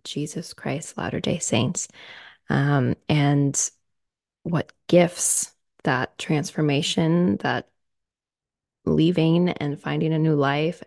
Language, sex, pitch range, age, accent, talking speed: English, female, 155-190 Hz, 20-39, American, 95 wpm